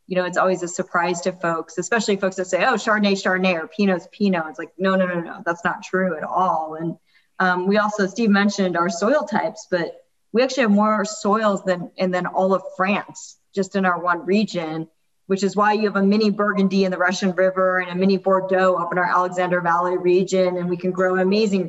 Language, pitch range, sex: English, 175-205 Hz, female